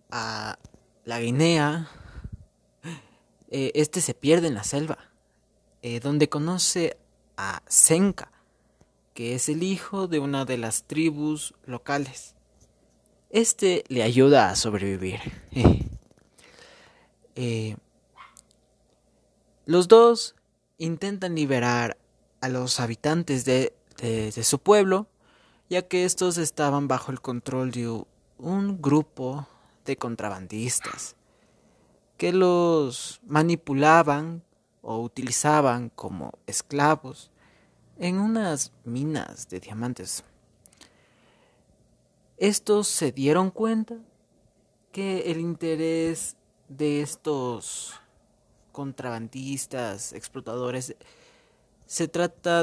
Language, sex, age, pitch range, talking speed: Spanish, male, 30-49, 120-165 Hz, 90 wpm